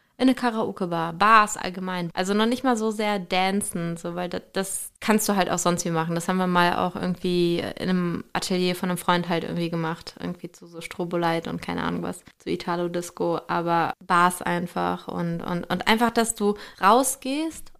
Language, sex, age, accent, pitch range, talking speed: German, female, 20-39, German, 175-210 Hz, 190 wpm